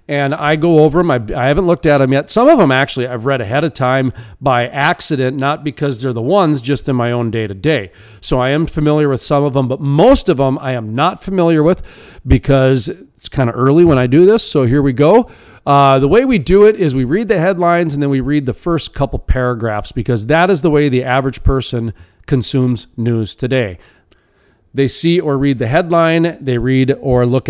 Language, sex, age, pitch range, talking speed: English, male, 40-59, 125-155 Hz, 230 wpm